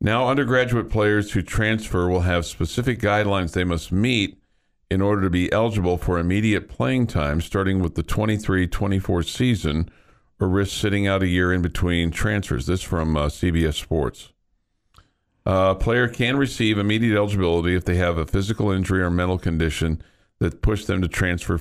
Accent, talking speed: American, 170 wpm